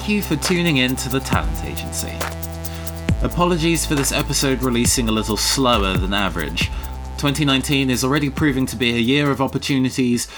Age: 20-39